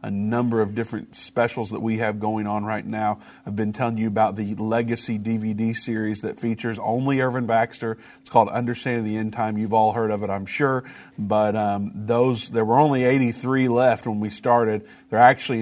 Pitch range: 110-130 Hz